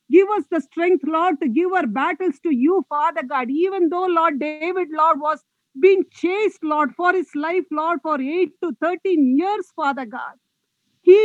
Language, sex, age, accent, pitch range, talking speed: English, female, 50-69, Indian, 275-355 Hz, 180 wpm